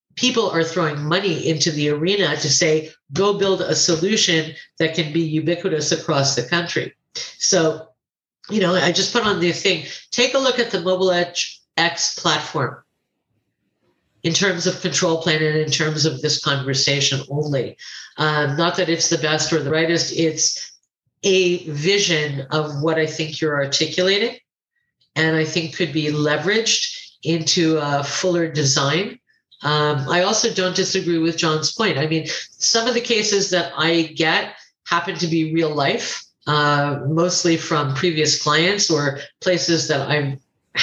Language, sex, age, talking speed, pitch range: English, female, 50-69, 160 wpm, 155-190 Hz